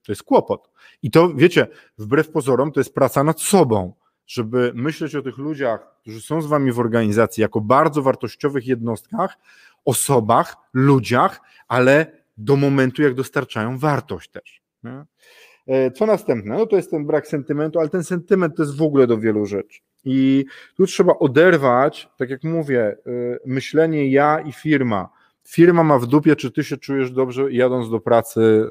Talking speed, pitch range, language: 165 wpm, 120-150 Hz, Polish